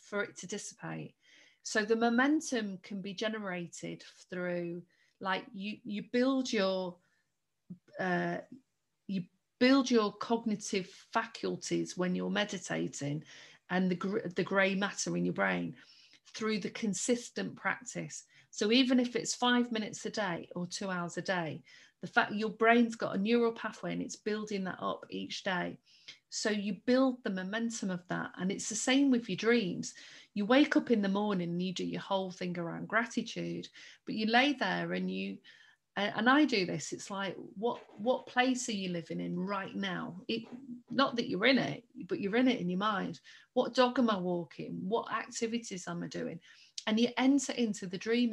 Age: 40-59